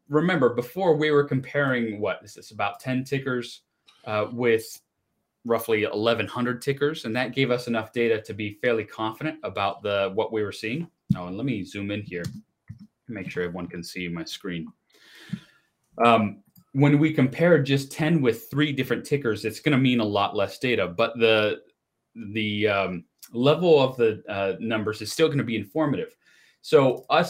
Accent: American